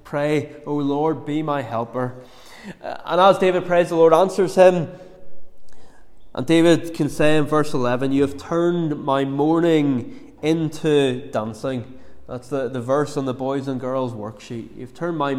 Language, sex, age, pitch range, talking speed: English, male, 20-39, 140-170 Hz, 165 wpm